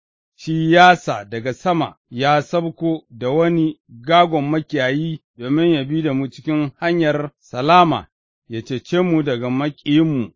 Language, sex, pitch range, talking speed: English, male, 135-180 Hz, 95 wpm